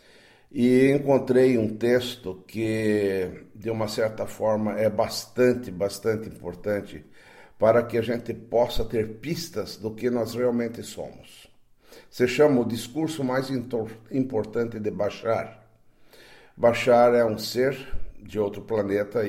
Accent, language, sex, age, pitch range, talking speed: Brazilian, Portuguese, male, 60-79, 105-125 Hz, 130 wpm